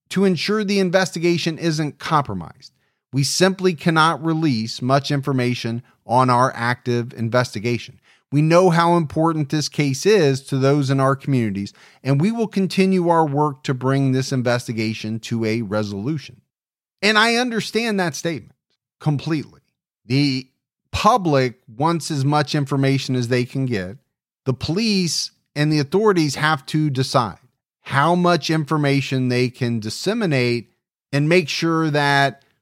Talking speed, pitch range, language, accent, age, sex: 140 wpm, 125-160 Hz, English, American, 40-59, male